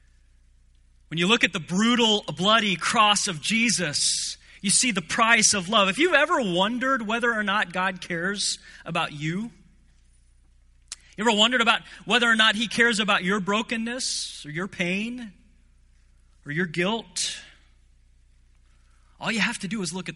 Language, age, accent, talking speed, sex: English, 30-49, American, 160 wpm, male